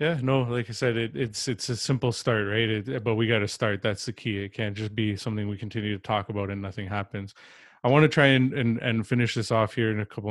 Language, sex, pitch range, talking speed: English, male, 105-120 Hz, 280 wpm